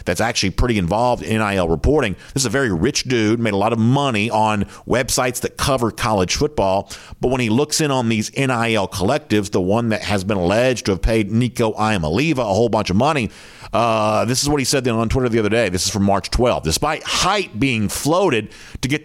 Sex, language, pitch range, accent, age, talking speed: male, English, 100-130 Hz, American, 50-69, 225 wpm